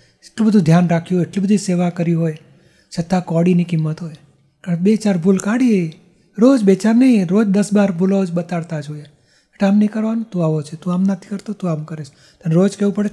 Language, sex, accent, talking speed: Gujarati, male, native, 225 wpm